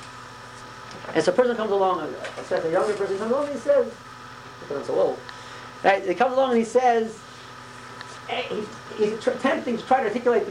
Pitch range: 185-245 Hz